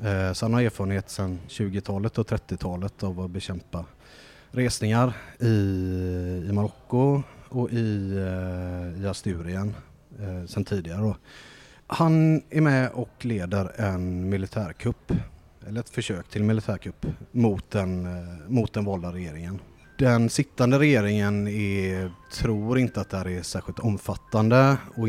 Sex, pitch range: male, 90-110 Hz